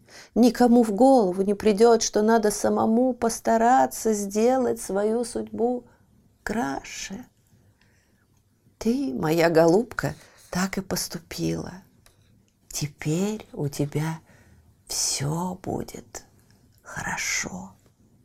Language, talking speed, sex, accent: Russian, 80 wpm, female, native